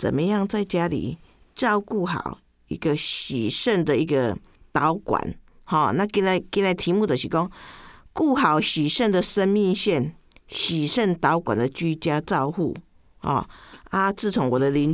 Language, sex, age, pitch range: Chinese, female, 50-69, 150-200 Hz